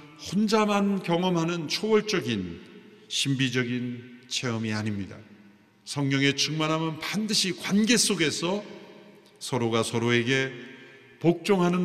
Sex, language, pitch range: male, Korean, 115-175 Hz